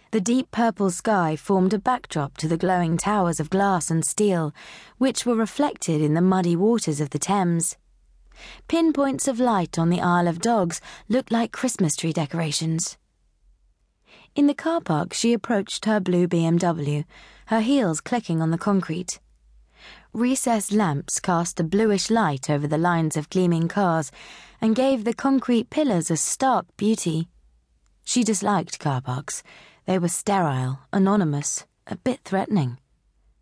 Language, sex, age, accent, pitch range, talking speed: English, female, 20-39, British, 160-220 Hz, 150 wpm